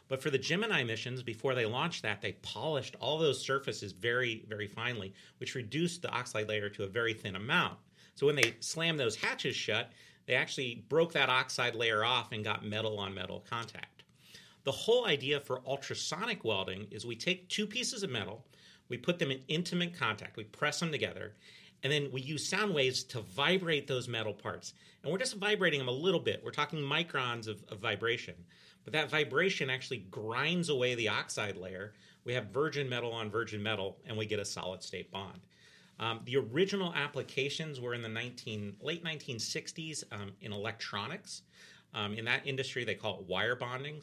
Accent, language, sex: American, English, male